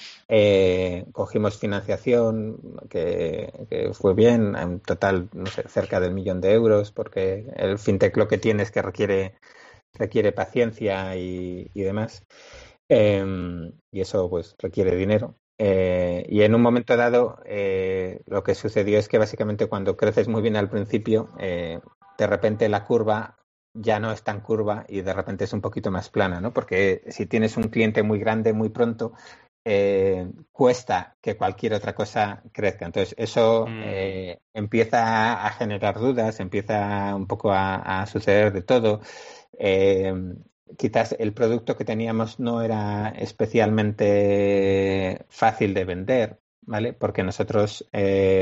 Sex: male